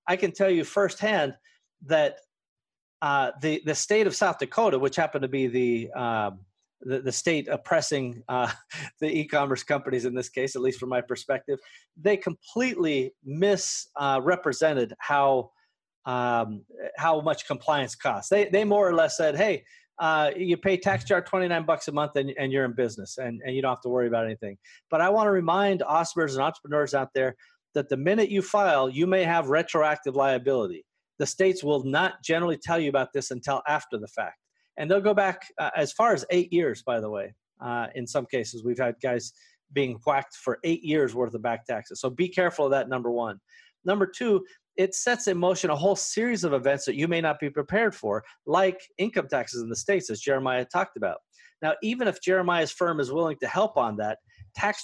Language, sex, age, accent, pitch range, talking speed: English, male, 30-49, American, 130-190 Hz, 205 wpm